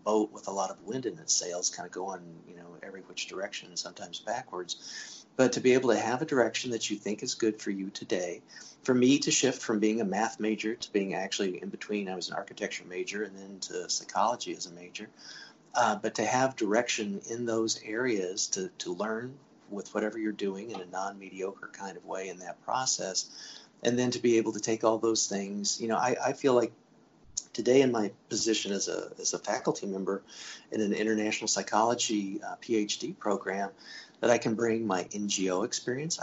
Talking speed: 210 wpm